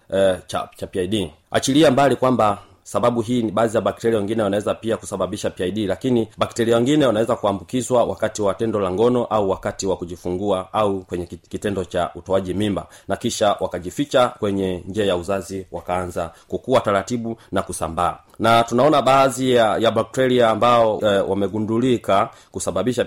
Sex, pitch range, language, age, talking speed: male, 90-110 Hz, Swahili, 30-49, 155 wpm